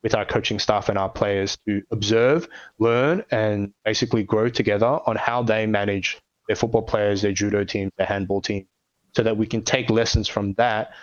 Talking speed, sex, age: 190 wpm, male, 20-39